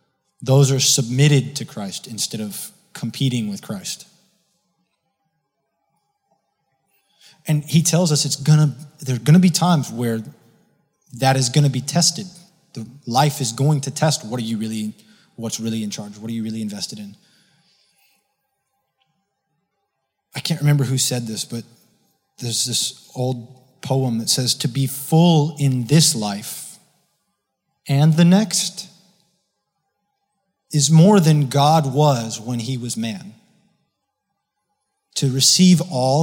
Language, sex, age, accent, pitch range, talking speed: English, male, 20-39, American, 130-175 Hz, 135 wpm